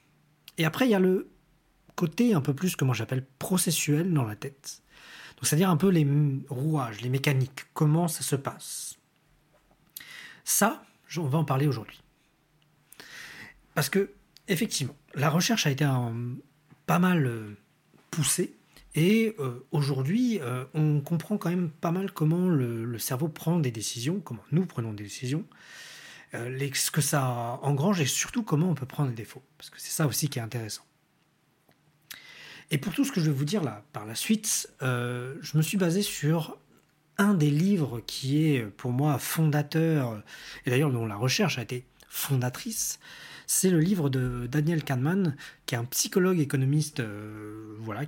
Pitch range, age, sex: 130-170 Hz, 40-59, male